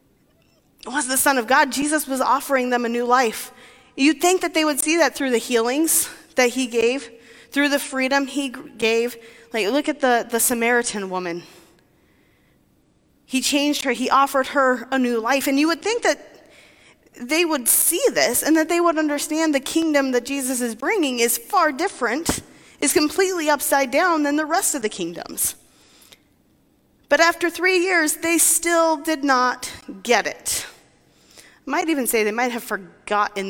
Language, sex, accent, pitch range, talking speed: English, female, American, 220-300 Hz, 170 wpm